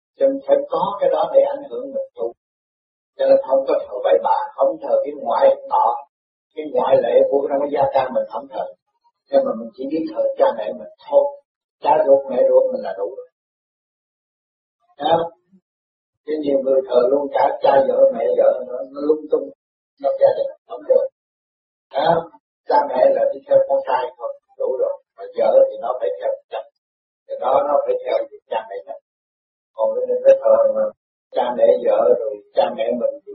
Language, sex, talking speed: Vietnamese, male, 195 wpm